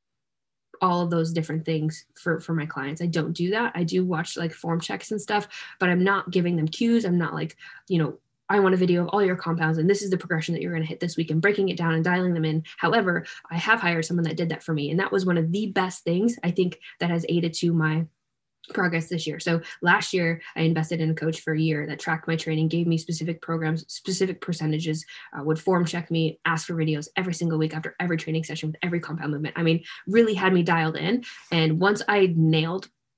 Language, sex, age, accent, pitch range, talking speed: English, female, 10-29, American, 160-185 Hz, 250 wpm